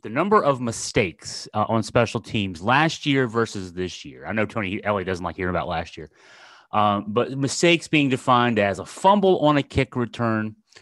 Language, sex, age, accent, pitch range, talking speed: English, male, 30-49, American, 105-145 Hz, 195 wpm